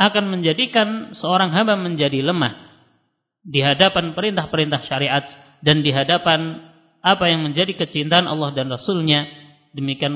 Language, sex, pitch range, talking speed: Indonesian, male, 155-200 Hz, 125 wpm